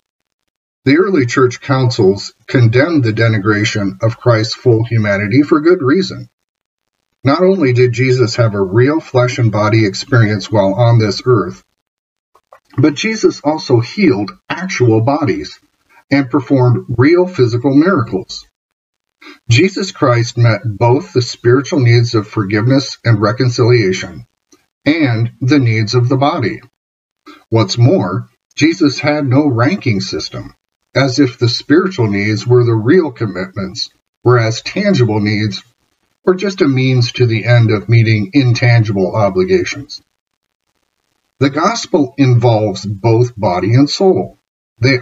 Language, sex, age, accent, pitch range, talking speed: English, male, 50-69, American, 110-135 Hz, 125 wpm